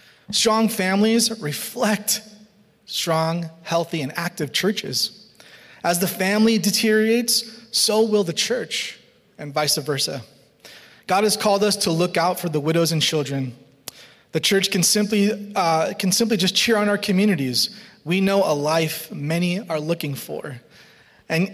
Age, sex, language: 30-49, male, English